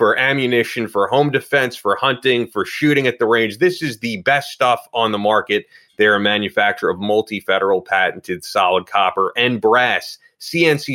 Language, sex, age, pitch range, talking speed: English, male, 30-49, 100-130 Hz, 170 wpm